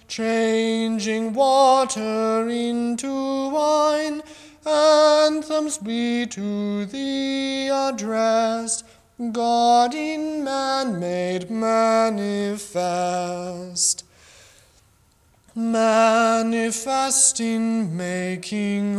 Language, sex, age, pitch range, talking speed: English, male, 30-49, 200-260 Hz, 55 wpm